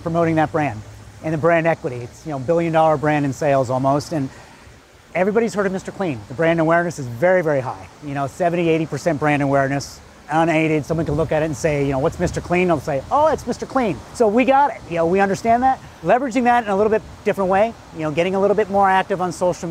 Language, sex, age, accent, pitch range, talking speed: English, male, 30-49, American, 145-180 Hz, 245 wpm